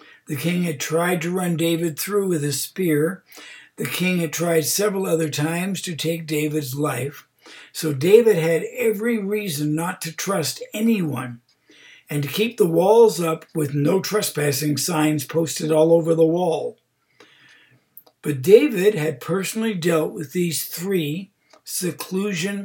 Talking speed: 145 wpm